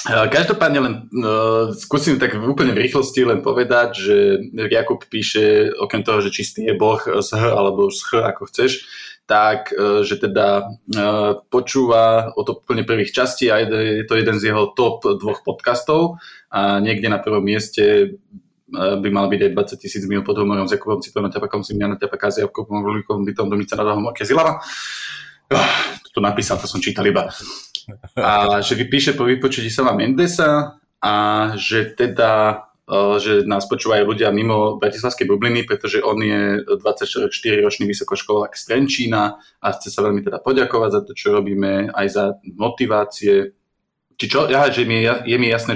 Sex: male